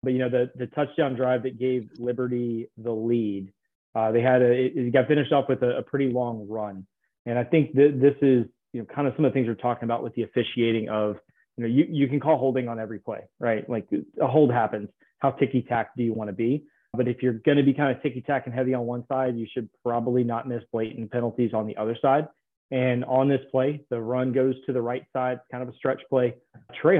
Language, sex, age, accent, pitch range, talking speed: English, male, 30-49, American, 115-130 Hz, 250 wpm